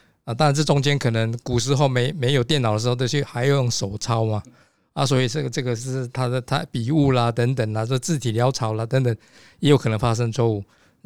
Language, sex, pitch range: Chinese, male, 115-145 Hz